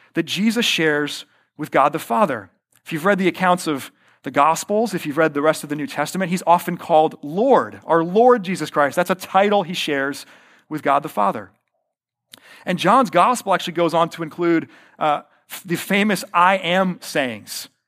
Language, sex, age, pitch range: English, male, 40-59, 155-205 Hz